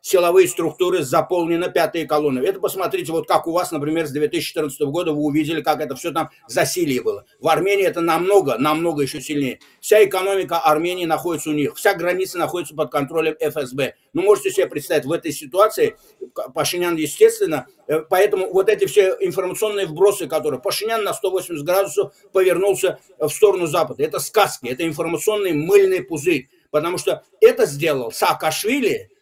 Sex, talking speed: male, 160 wpm